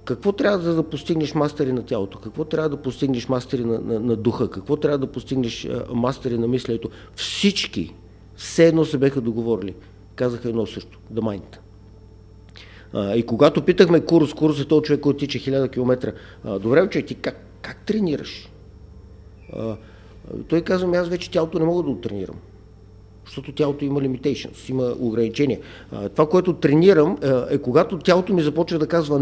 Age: 50-69